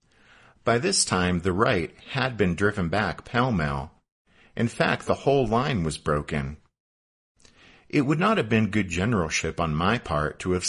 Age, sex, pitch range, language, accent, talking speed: 50-69, male, 80-120 Hz, English, American, 165 wpm